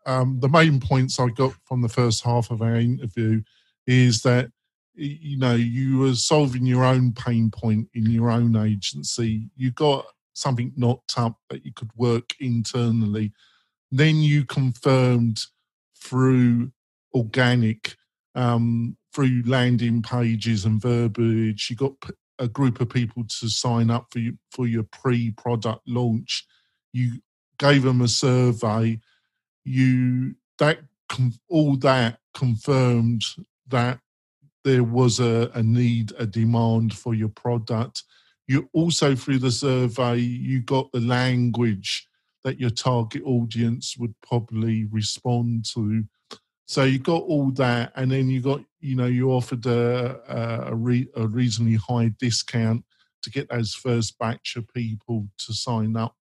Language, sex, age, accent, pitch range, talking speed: English, male, 40-59, British, 115-130 Hz, 140 wpm